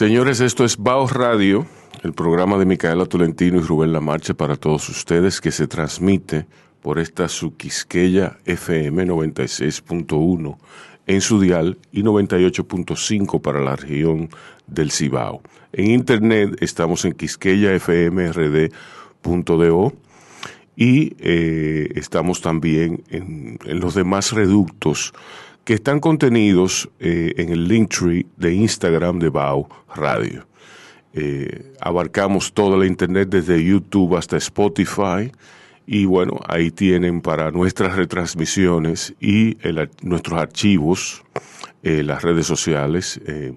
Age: 40-59